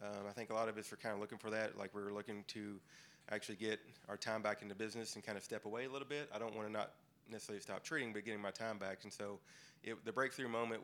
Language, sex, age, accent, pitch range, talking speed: English, male, 30-49, American, 105-115 Hz, 290 wpm